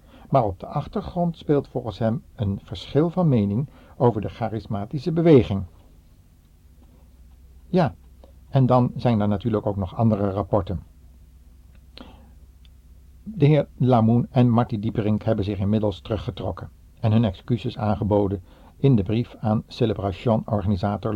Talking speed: 125 wpm